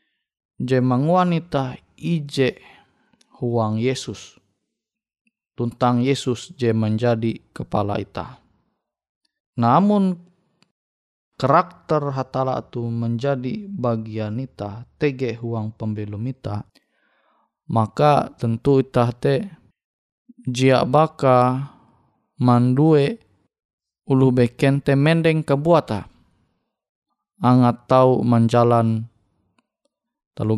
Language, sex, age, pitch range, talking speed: Indonesian, male, 20-39, 115-145 Hz, 75 wpm